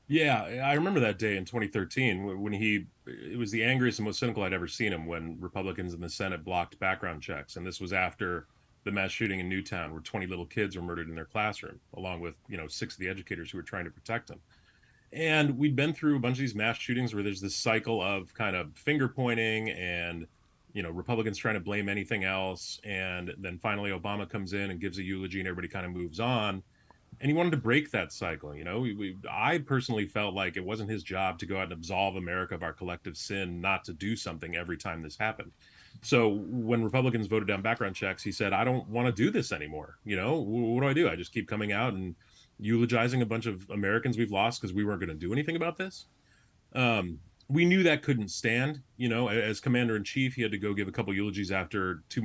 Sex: male